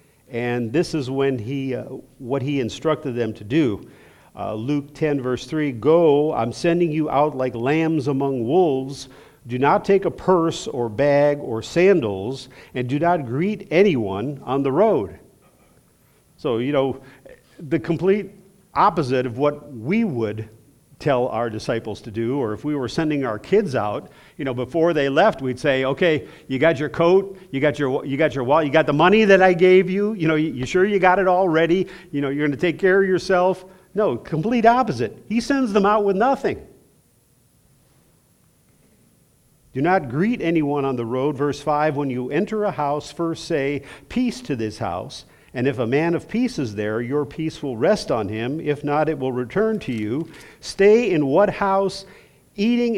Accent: American